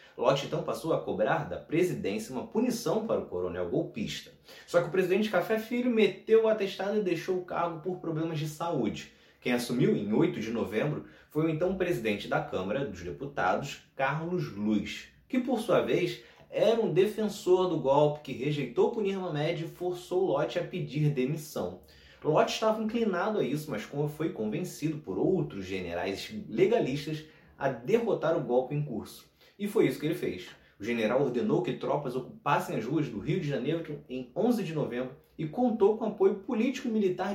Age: 20-39